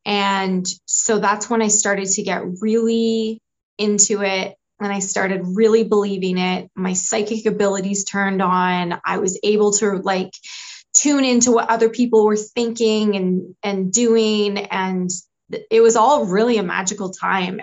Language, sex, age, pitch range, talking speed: English, female, 20-39, 190-225 Hz, 155 wpm